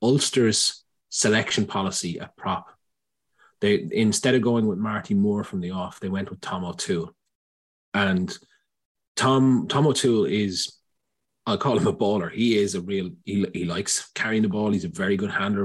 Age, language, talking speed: 30-49, English, 175 wpm